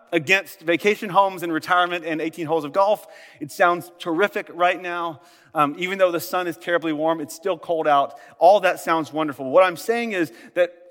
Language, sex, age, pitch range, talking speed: English, male, 30-49, 170-225 Hz, 200 wpm